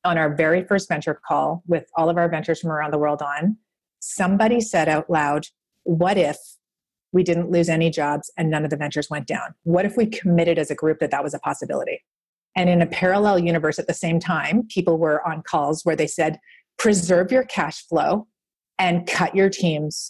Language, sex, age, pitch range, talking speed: English, female, 30-49, 160-190 Hz, 210 wpm